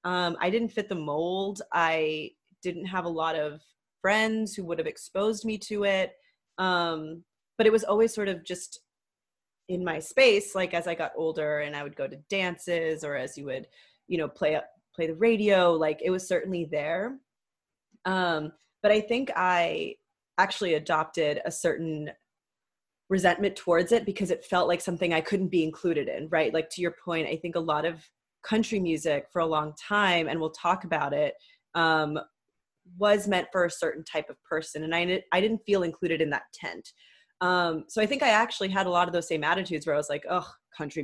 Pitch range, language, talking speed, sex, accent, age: 160-200 Hz, English, 200 wpm, female, American, 30-49